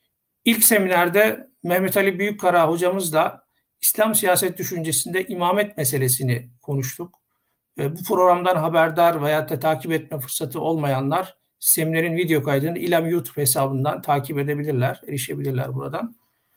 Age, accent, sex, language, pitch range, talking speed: 60-79, native, male, Turkish, 150-195 Hz, 110 wpm